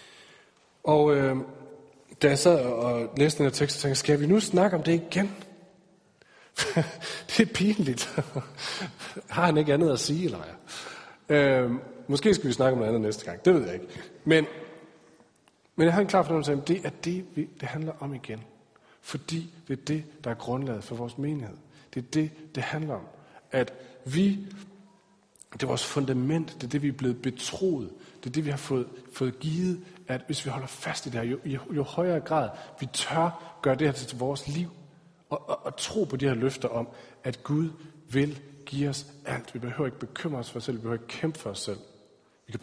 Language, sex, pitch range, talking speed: Danish, male, 125-160 Hz, 215 wpm